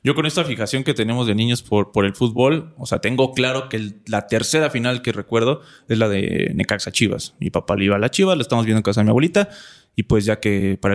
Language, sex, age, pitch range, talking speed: Spanish, male, 20-39, 105-135 Hz, 265 wpm